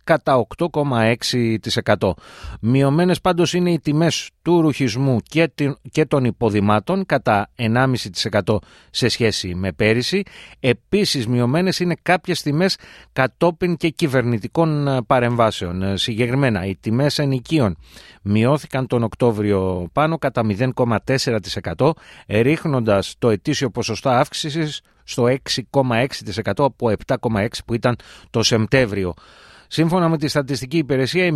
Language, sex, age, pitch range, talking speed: Greek, male, 30-49, 110-145 Hz, 105 wpm